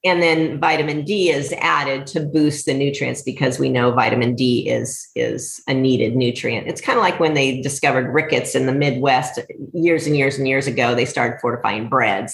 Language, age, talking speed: English, 40-59, 200 wpm